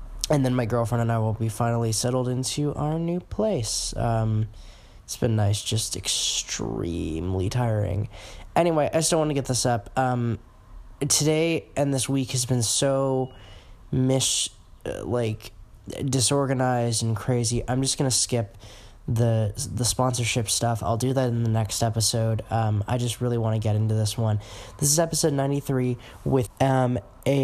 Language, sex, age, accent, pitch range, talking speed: English, male, 10-29, American, 110-130 Hz, 165 wpm